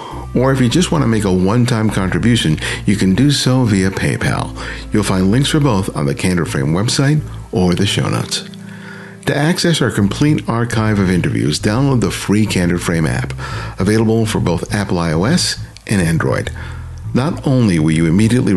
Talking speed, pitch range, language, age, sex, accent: 170 wpm, 95-130 Hz, English, 50-69, male, American